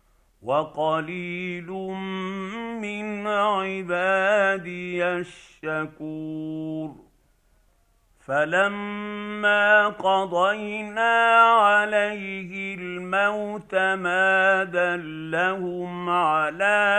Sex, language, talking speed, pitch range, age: male, Arabic, 40 wpm, 175-195 Hz, 50-69